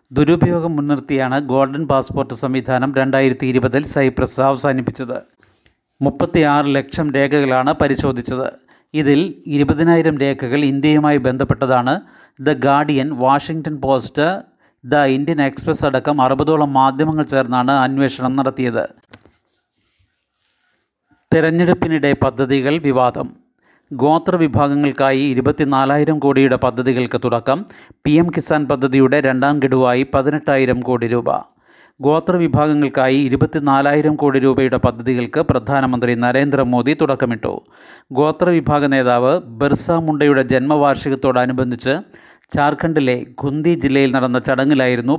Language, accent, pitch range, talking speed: Malayalam, native, 130-150 Hz, 90 wpm